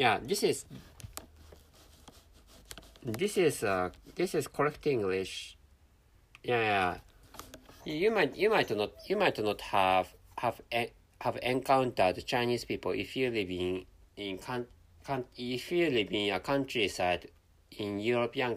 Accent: Japanese